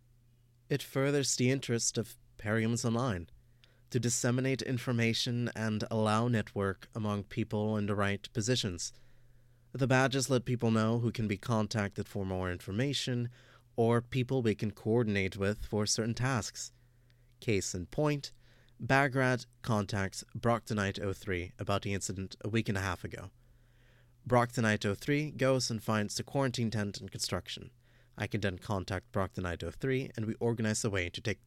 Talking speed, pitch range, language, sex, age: 150 wpm, 105-120 Hz, English, male, 30-49